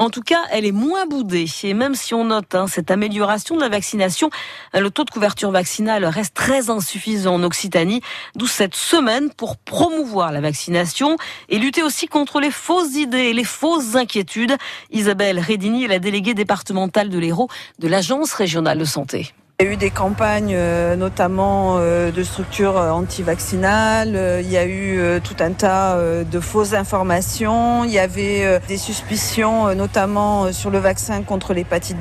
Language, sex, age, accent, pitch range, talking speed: French, female, 40-59, French, 180-230 Hz, 170 wpm